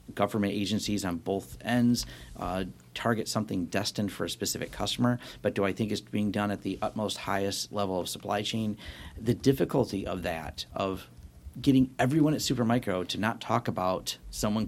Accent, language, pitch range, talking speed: American, English, 90-110 Hz, 170 wpm